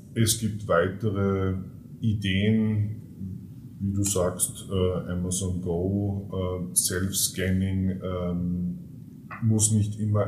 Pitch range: 90-105 Hz